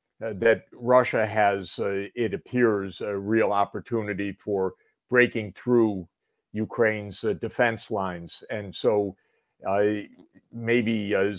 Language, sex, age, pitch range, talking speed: English, male, 50-69, 100-120 Hz, 110 wpm